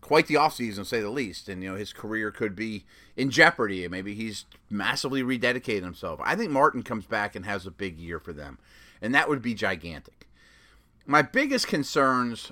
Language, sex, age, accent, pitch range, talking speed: English, male, 30-49, American, 105-135 Hz, 195 wpm